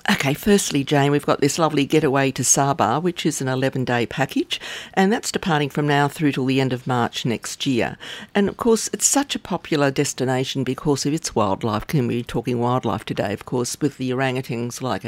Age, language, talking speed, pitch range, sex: 50-69, English, 205 wpm, 125-140 Hz, female